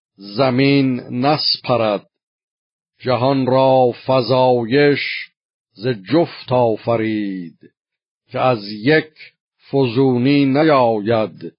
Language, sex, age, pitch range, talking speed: Persian, male, 50-69, 115-140 Hz, 80 wpm